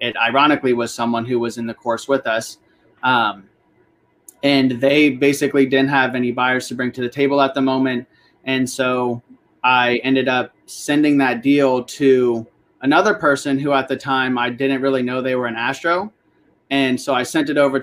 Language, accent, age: English, American, 30-49